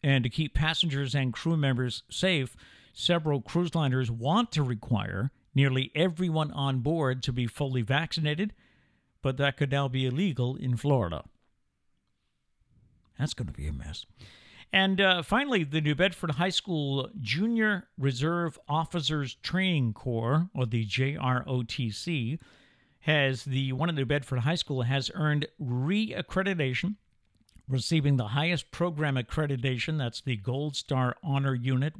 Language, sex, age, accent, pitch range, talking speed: English, male, 50-69, American, 125-155 Hz, 140 wpm